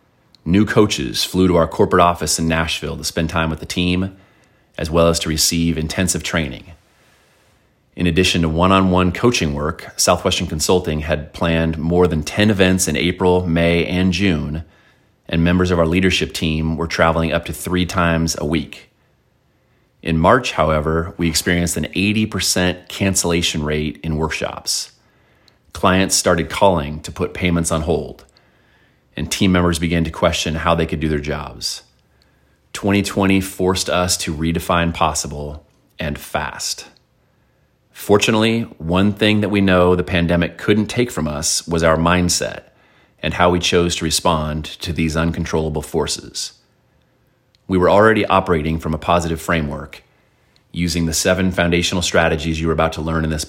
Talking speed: 155 wpm